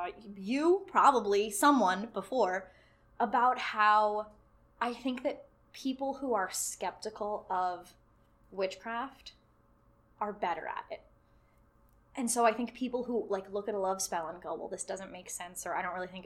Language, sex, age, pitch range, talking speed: English, female, 10-29, 195-235 Hz, 160 wpm